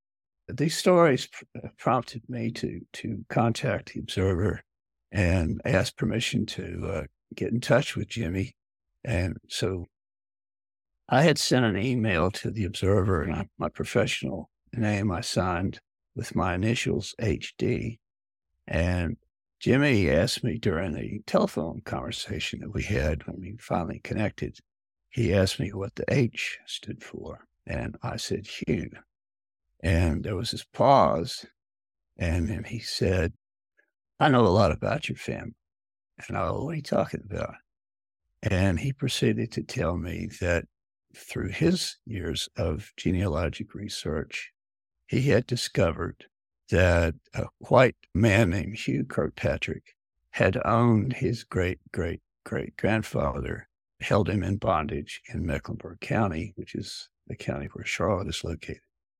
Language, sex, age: English, male, 60-79